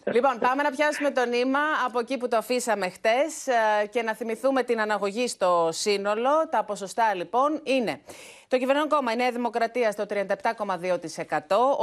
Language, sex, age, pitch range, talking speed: Greek, female, 30-49, 180-255 Hz, 155 wpm